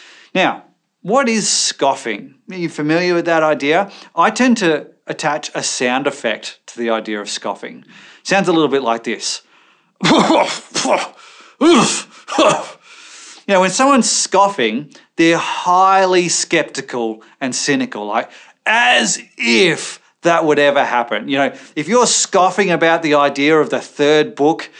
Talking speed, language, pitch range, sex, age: 140 wpm, English, 145-195 Hz, male, 30-49